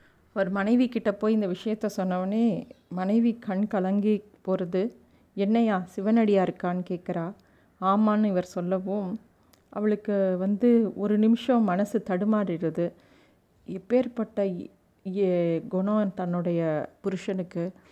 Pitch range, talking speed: 185-220 Hz, 95 wpm